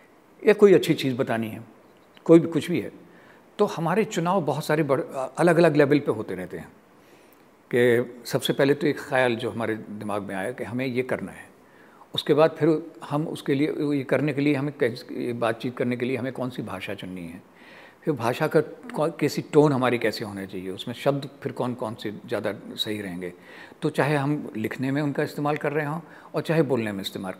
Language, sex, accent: Hindi, male, native